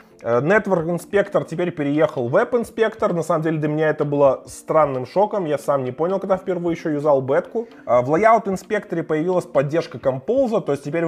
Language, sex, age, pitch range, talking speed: Russian, male, 20-39, 125-175 Hz, 185 wpm